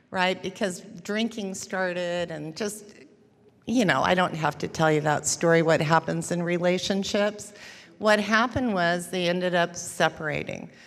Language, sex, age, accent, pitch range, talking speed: English, female, 50-69, American, 170-205 Hz, 150 wpm